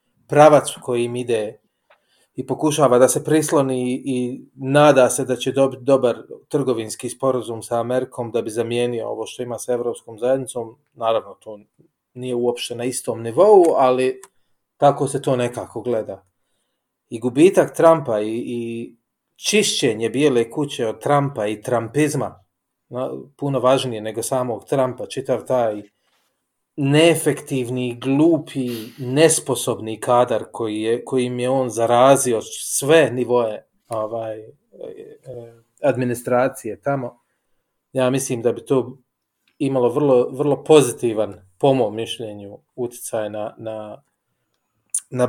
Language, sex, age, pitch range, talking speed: English, male, 30-49, 115-140 Hz, 125 wpm